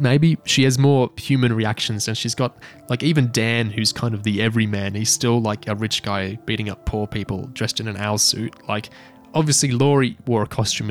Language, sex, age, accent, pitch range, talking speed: English, male, 20-39, Australian, 105-125 Hz, 210 wpm